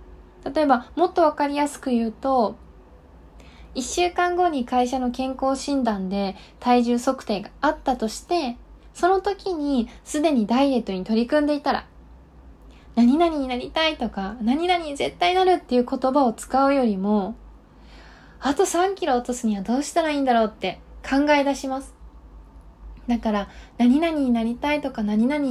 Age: 20-39